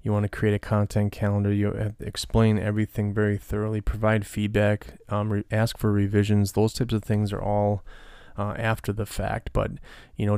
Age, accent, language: 20-39, American, English